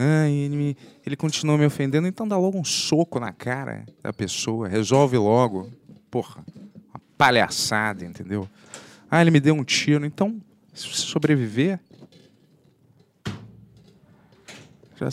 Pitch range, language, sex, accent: 100-145 Hz, Portuguese, male, Brazilian